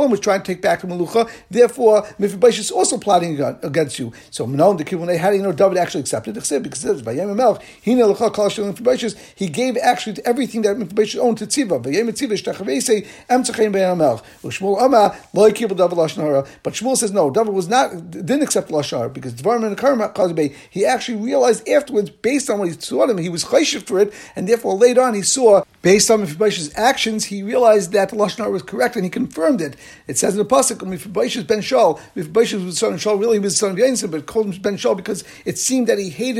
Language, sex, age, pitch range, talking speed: English, male, 50-69, 185-225 Hz, 195 wpm